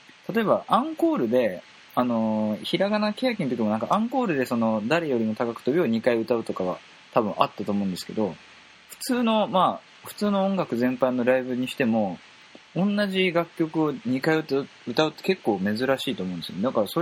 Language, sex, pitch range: Japanese, male, 110-175 Hz